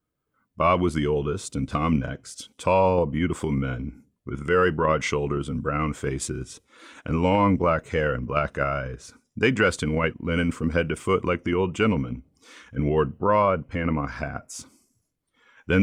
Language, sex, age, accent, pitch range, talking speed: English, male, 40-59, American, 70-95 Hz, 165 wpm